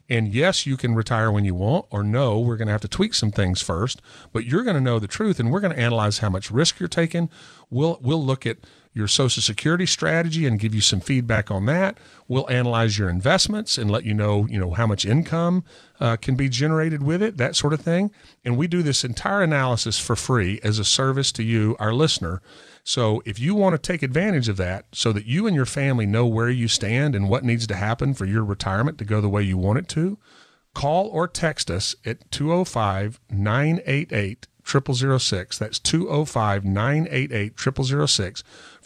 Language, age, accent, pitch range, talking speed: English, 40-59, American, 110-155 Hz, 205 wpm